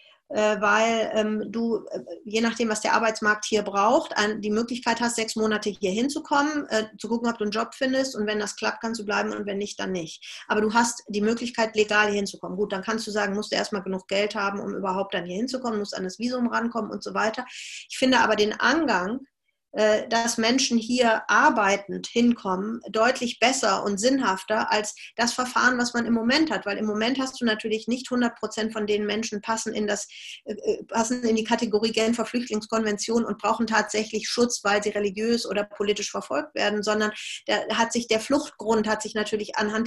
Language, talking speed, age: German, 200 wpm, 30-49